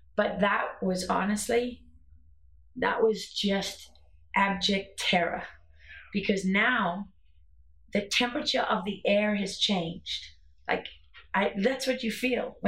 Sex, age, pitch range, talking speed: female, 30-49, 180-225 Hz, 110 wpm